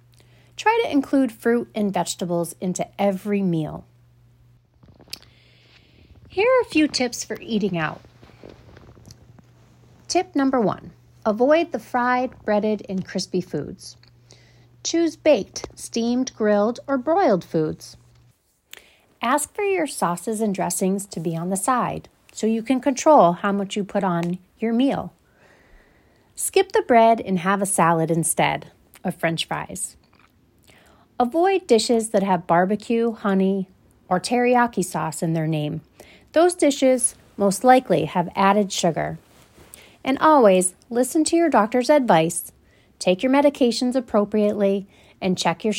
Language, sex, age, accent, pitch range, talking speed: English, female, 30-49, American, 165-240 Hz, 130 wpm